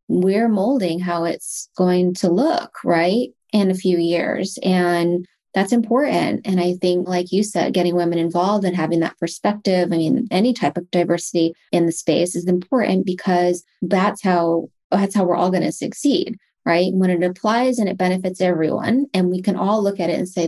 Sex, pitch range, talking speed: female, 175-205 Hz, 195 wpm